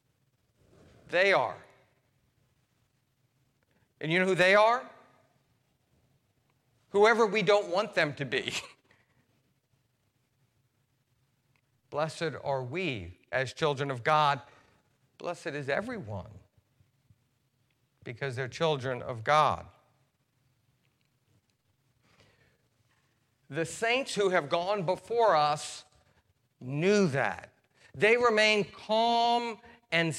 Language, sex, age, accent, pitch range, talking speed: English, male, 50-69, American, 125-185 Hz, 85 wpm